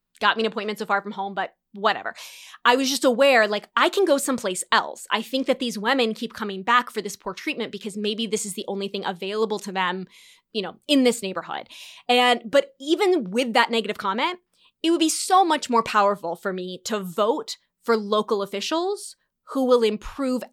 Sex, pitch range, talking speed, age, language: female, 205-265 Hz, 210 wpm, 20-39, English